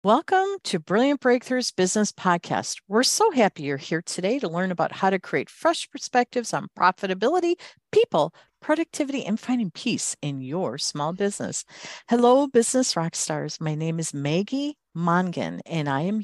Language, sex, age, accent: English, female, 50-69, American